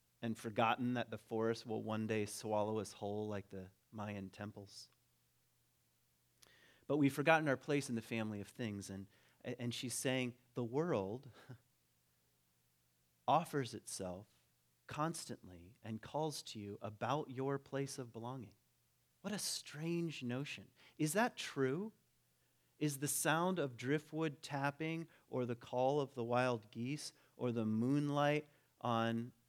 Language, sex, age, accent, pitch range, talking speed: English, male, 30-49, American, 105-140 Hz, 135 wpm